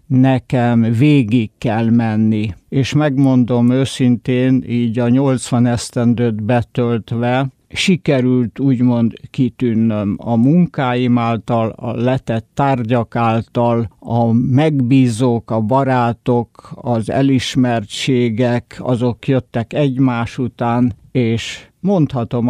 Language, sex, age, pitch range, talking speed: Hungarian, male, 60-79, 120-135 Hz, 90 wpm